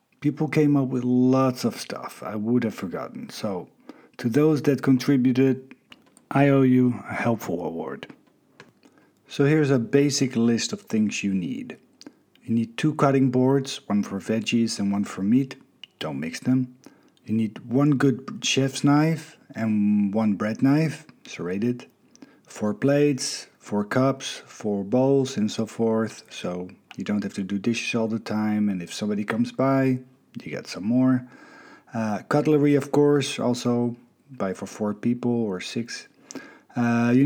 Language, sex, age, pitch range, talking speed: English, male, 50-69, 115-140 Hz, 160 wpm